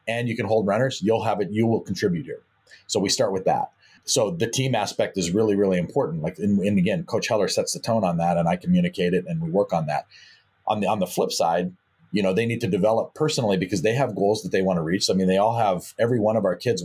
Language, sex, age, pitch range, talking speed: English, male, 40-59, 100-120 Hz, 275 wpm